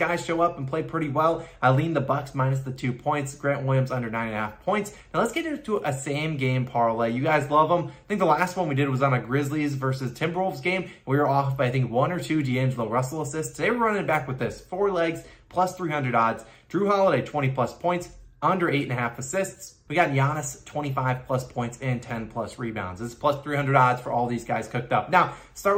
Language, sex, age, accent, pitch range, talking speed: English, male, 20-39, American, 120-150 Hz, 245 wpm